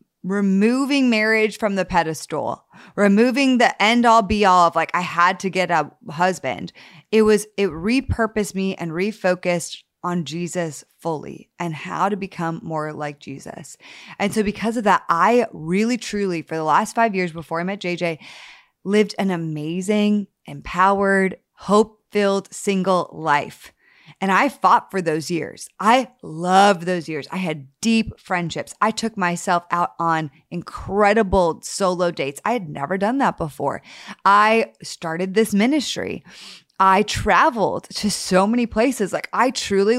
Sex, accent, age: female, American, 20-39